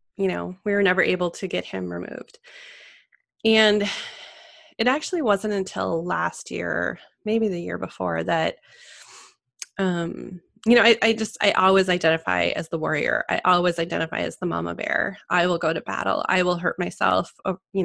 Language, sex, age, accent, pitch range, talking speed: English, female, 20-39, American, 170-215 Hz, 170 wpm